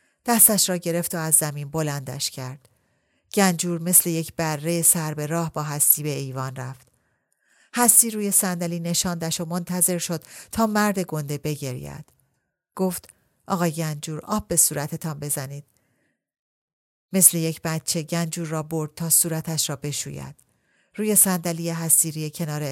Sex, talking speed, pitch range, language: female, 135 wpm, 145-180 Hz, Persian